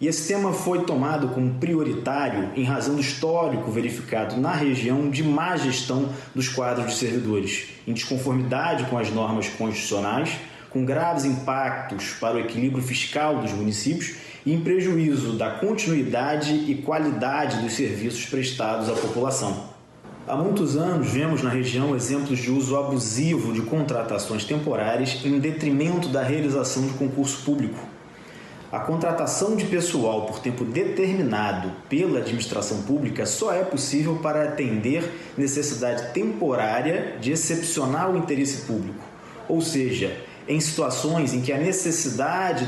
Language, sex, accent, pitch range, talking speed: Portuguese, male, Brazilian, 125-160 Hz, 135 wpm